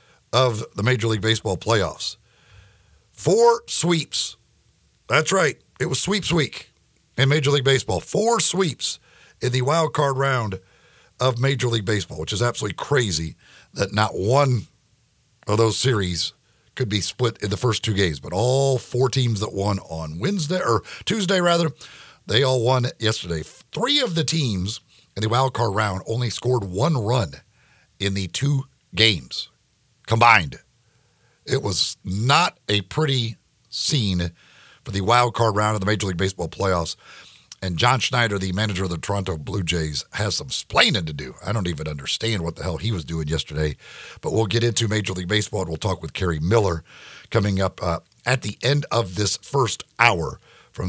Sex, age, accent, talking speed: male, 50-69, American, 175 wpm